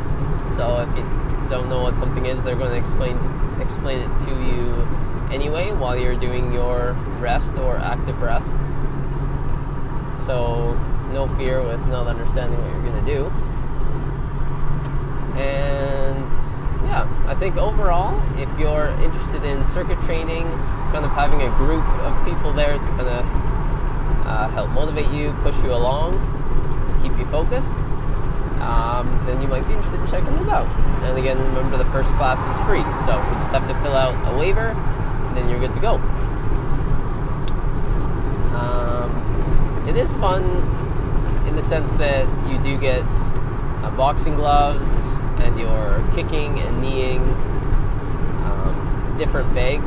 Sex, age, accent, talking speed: male, 20-39, American, 150 wpm